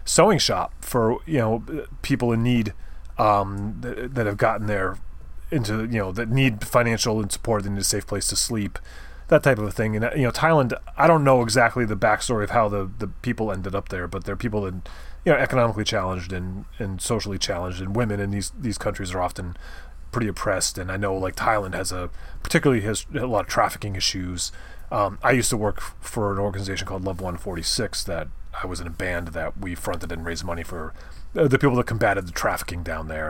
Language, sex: English, male